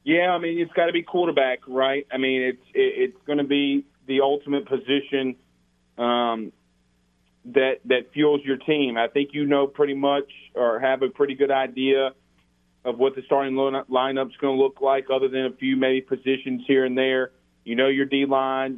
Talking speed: 190 wpm